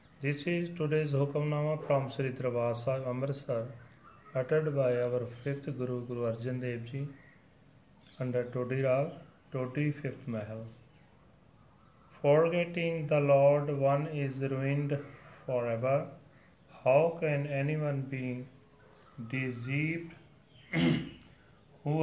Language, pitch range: Punjabi, 125-150 Hz